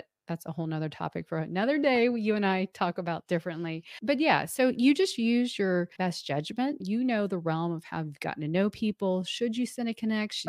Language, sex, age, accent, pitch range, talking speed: English, female, 40-59, American, 170-230 Hz, 225 wpm